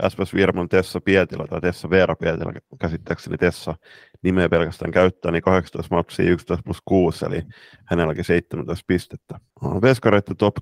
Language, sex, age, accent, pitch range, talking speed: Finnish, male, 20-39, native, 90-105 Hz, 140 wpm